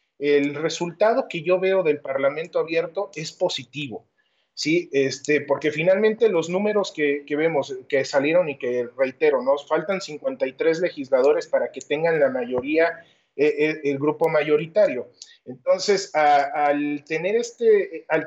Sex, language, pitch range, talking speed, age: male, Spanish, 140-185 Hz, 145 wpm, 30-49